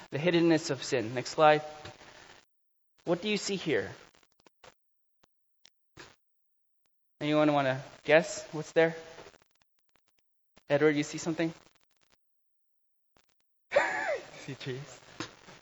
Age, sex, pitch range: 20-39, male, 160-220 Hz